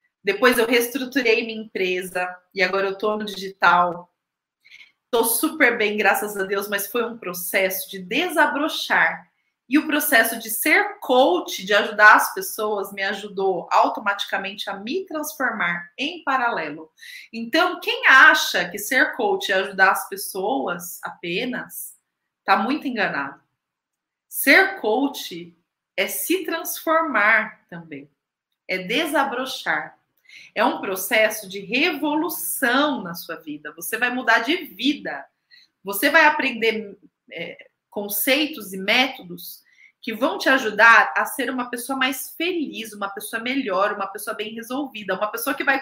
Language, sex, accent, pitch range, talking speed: Portuguese, female, Brazilian, 195-285 Hz, 135 wpm